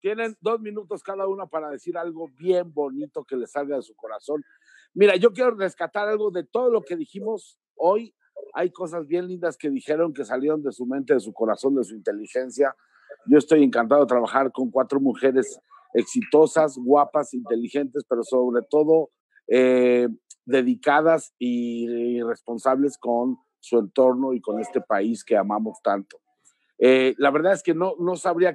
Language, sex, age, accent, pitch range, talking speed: Spanish, male, 50-69, Mexican, 125-175 Hz, 170 wpm